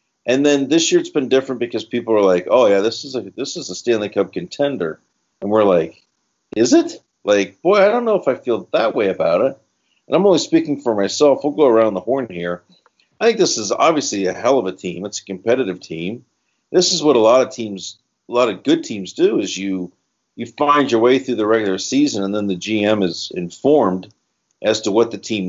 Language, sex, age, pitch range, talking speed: English, male, 50-69, 95-120 Hz, 235 wpm